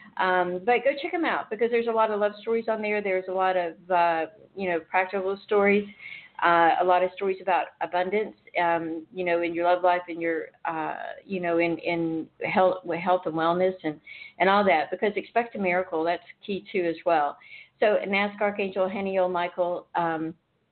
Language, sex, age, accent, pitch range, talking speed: English, female, 50-69, American, 175-200 Hz, 205 wpm